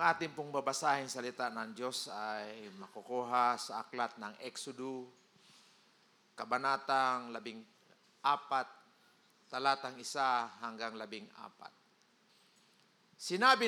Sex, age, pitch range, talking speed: male, 50-69, 130-200 Hz, 90 wpm